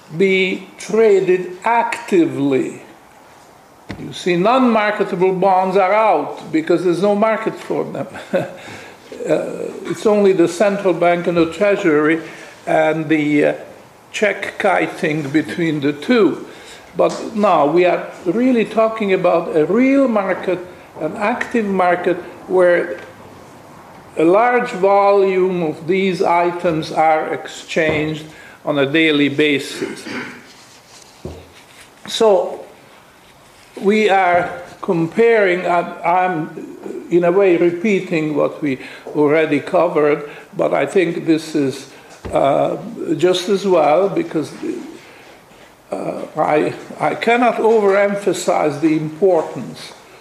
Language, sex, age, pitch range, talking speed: English, male, 50-69, 160-205 Hz, 105 wpm